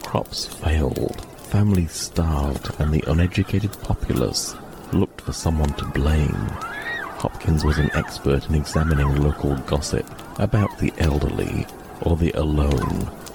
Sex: male